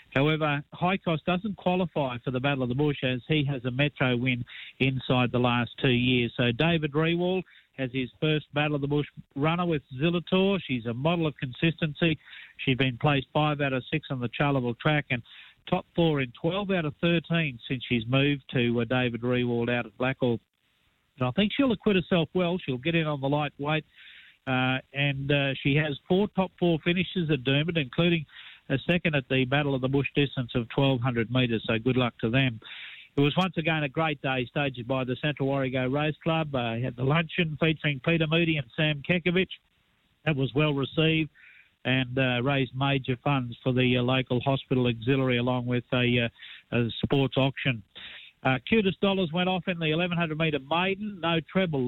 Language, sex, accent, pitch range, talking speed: English, male, Australian, 130-165 Hz, 195 wpm